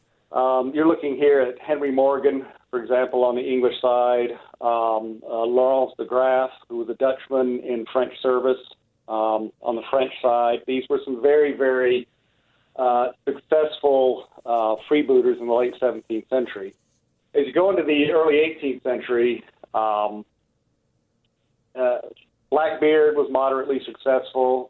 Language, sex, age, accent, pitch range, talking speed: English, male, 40-59, American, 120-135 Hz, 140 wpm